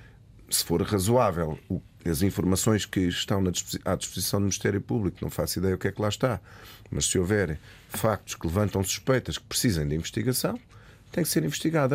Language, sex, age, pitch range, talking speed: Portuguese, male, 40-59, 95-130 Hz, 180 wpm